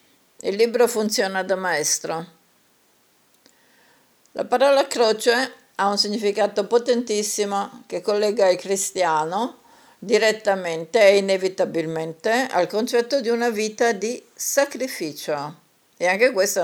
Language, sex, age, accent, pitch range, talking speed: Italian, female, 50-69, native, 170-220 Hz, 105 wpm